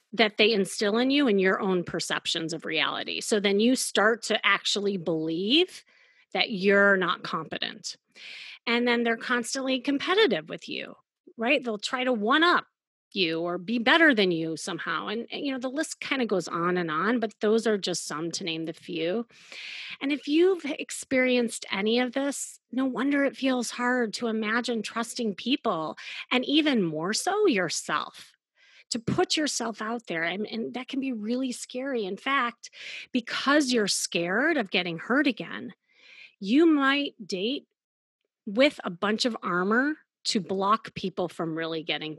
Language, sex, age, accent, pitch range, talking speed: English, female, 30-49, American, 195-260 Hz, 170 wpm